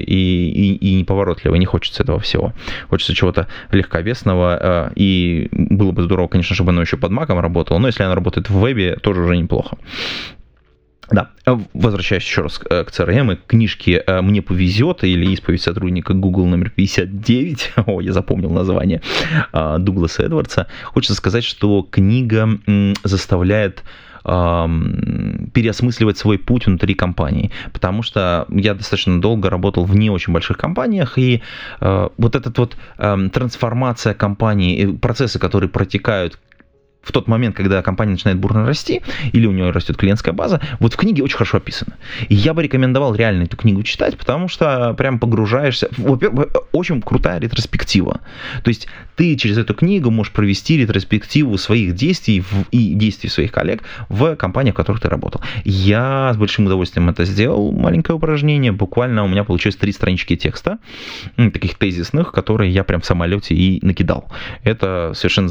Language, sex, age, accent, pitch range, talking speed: Russian, male, 20-39, native, 90-120 Hz, 155 wpm